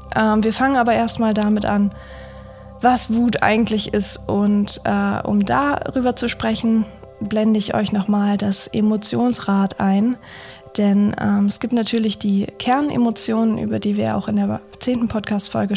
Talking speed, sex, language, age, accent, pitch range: 145 wpm, female, German, 20-39, German, 200-230 Hz